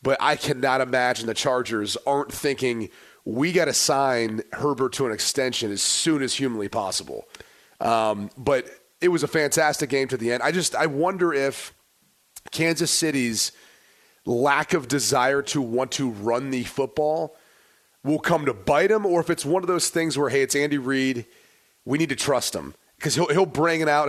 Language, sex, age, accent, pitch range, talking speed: English, male, 30-49, American, 130-175 Hz, 185 wpm